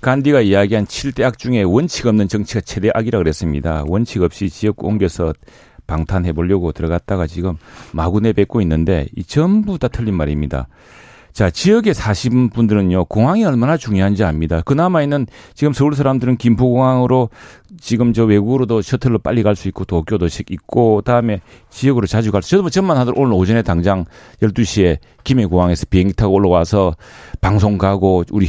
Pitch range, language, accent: 95-130 Hz, Korean, native